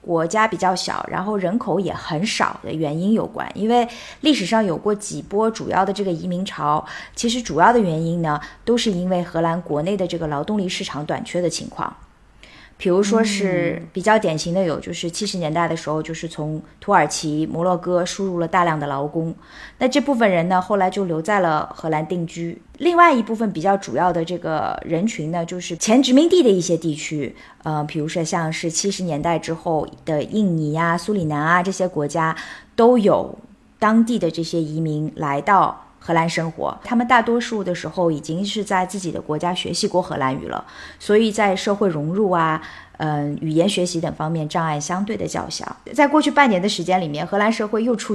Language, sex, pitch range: Chinese, female, 165-210 Hz